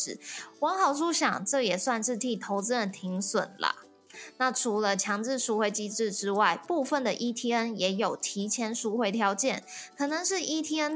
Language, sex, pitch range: Chinese, female, 200-255 Hz